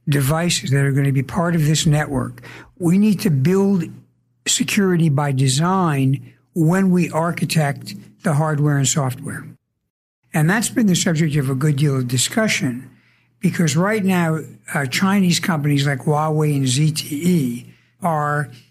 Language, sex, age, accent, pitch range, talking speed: English, male, 60-79, American, 140-175 Hz, 150 wpm